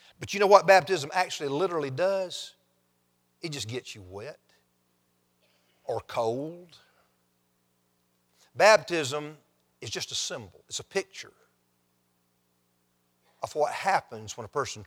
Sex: male